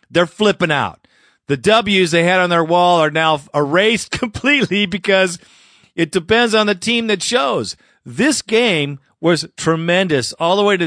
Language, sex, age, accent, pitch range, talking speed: English, male, 40-59, American, 150-200 Hz, 165 wpm